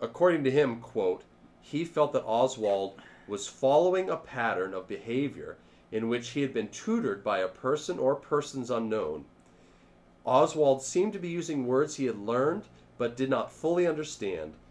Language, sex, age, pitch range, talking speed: English, male, 40-59, 95-145 Hz, 165 wpm